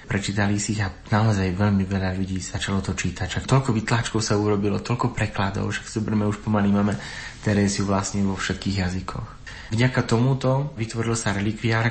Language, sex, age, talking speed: Slovak, male, 30-49, 170 wpm